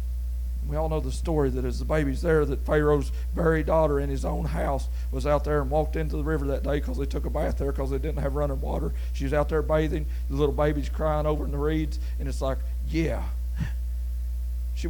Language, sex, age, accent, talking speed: English, male, 40-59, American, 230 wpm